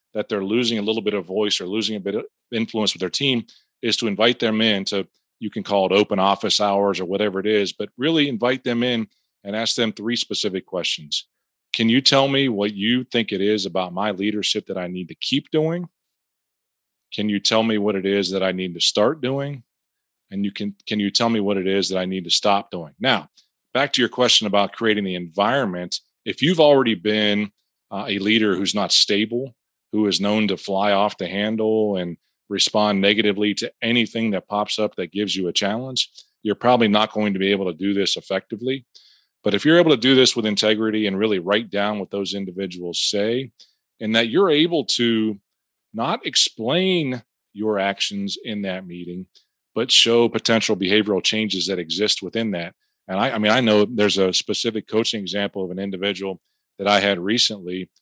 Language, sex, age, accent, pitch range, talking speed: English, male, 30-49, American, 100-115 Hz, 205 wpm